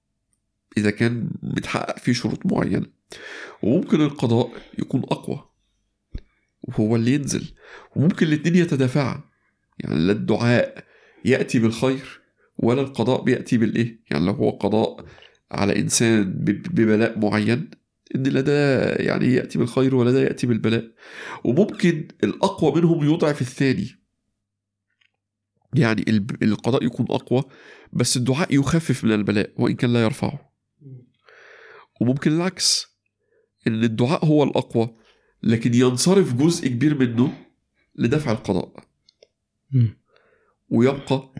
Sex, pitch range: male, 110-145 Hz